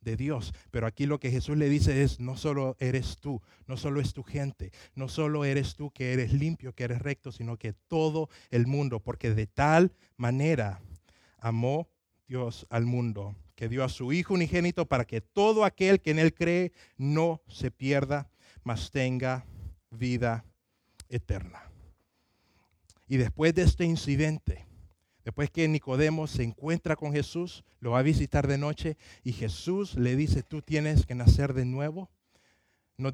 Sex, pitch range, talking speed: male, 100-150 Hz, 165 wpm